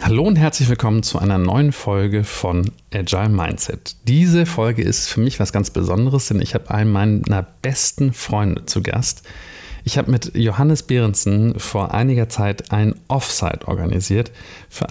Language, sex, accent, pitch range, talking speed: German, male, German, 100-120 Hz, 160 wpm